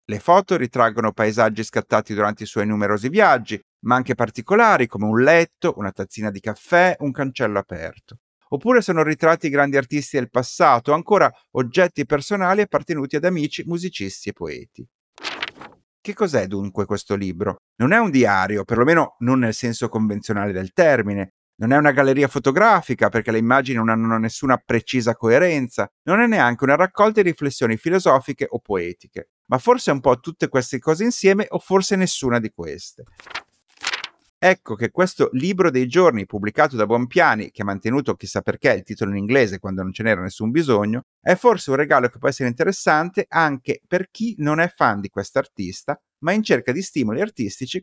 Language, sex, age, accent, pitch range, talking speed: Italian, male, 50-69, native, 110-175 Hz, 170 wpm